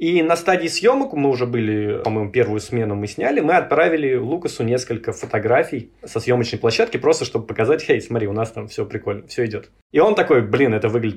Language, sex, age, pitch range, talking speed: Russian, male, 20-39, 110-145 Hz, 205 wpm